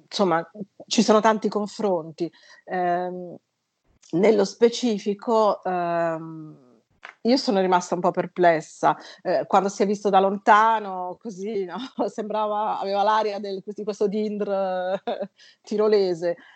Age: 30-49